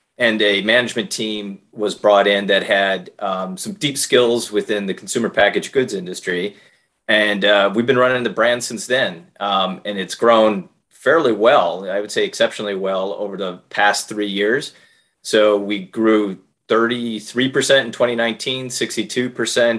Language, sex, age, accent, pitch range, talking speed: English, male, 30-49, American, 100-115 Hz, 150 wpm